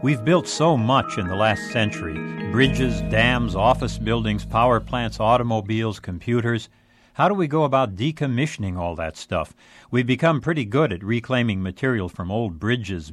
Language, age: English, 60-79